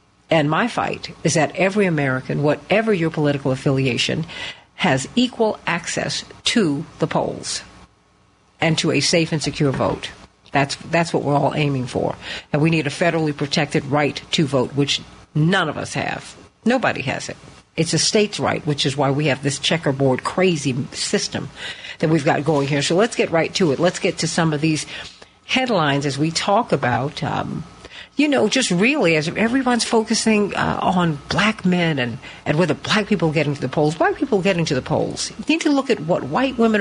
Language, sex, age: English, female, 50-69